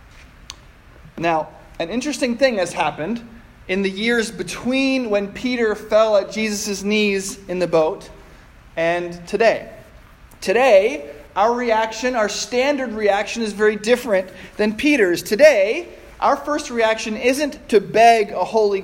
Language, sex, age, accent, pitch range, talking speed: English, male, 20-39, American, 175-235 Hz, 130 wpm